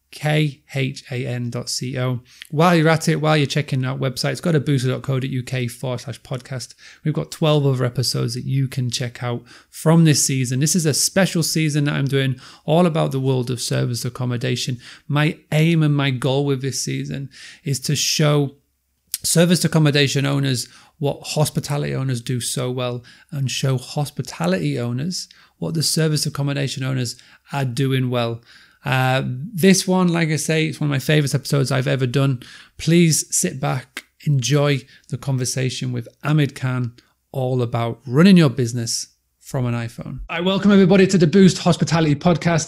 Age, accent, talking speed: 30-49, British, 165 wpm